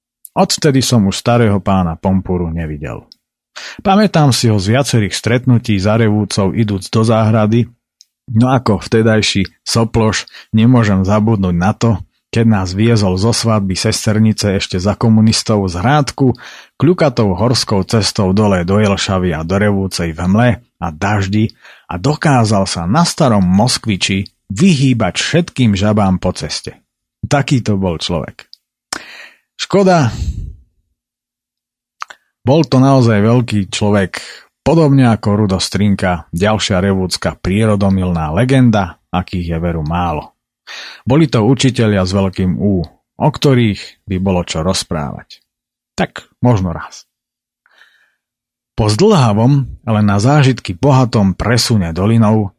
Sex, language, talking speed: male, Slovak, 120 wpm